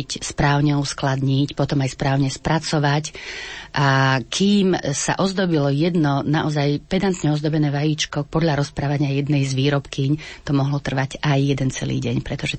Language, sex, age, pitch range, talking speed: Slovak, female, 30-49, 140-160 Hz, 135 wpm